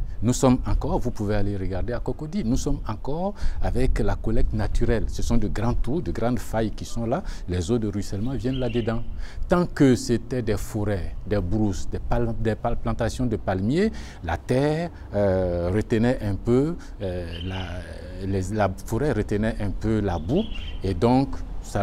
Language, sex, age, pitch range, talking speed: French, male, 50-69, 95-125 Hz, 180 wpm